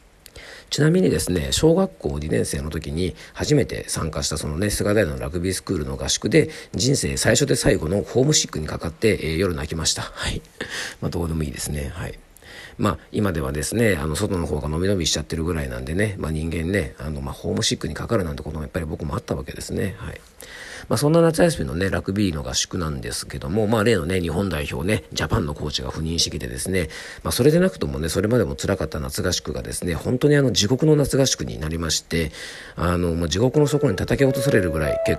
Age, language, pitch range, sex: 40-59, Japanese, 75-100 Hz, male